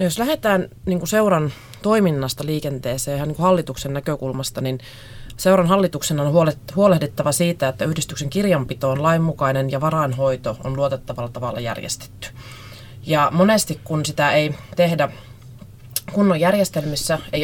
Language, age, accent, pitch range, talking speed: Finnish, 30-49, native, 130-155 Hz, 125 wpm